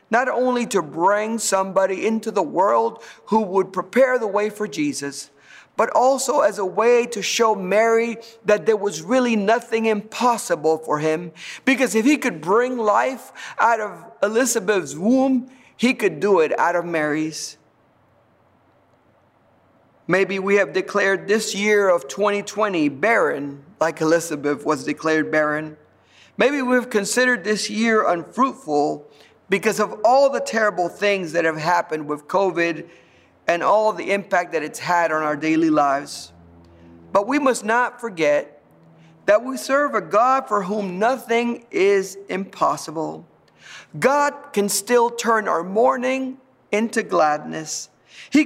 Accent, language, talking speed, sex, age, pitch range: American, English, 140 wpm, male, 50-69, 155-240 Hz